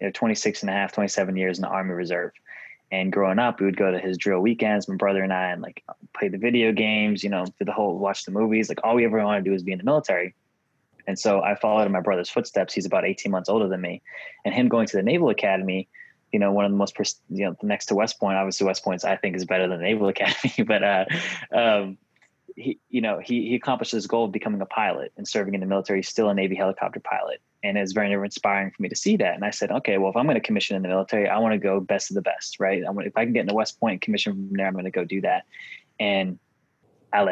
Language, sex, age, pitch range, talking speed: English, male, 20-39, 95-110 Hz, 285 wpm